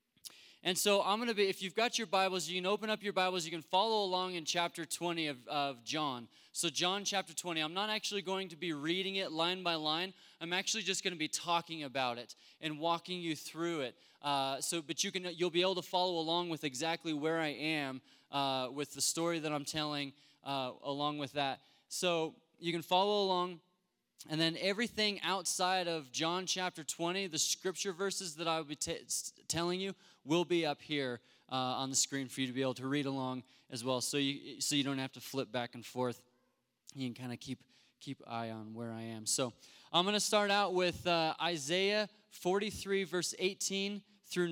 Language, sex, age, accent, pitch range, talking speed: English, male, 20-39, American, 145-185 Hz, 215 wpm